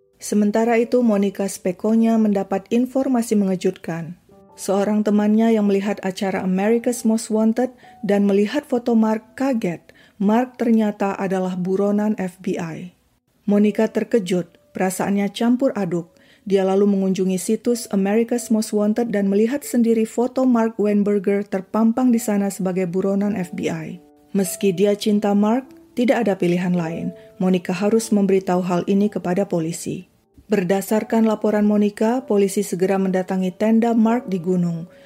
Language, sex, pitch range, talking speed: Indonesian, female, 190-220 Hz, 125 wpm